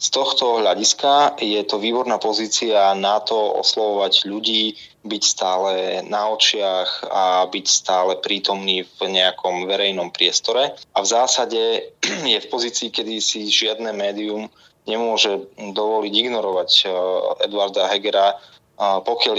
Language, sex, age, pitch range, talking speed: Slovak, male, 20-39, 100-115 Hz, 120 wpm